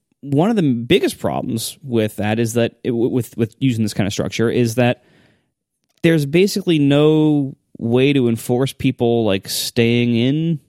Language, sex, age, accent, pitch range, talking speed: English, male, 20-39, American, 105-140 Hz, 155 wpm